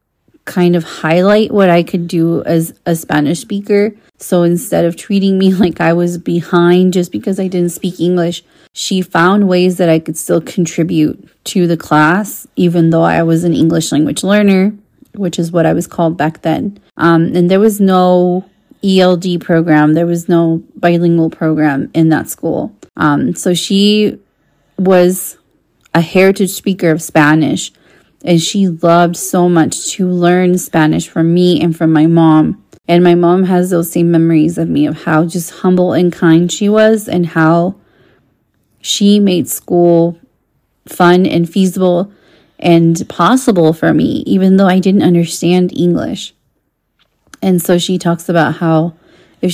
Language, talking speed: English, 160 wpm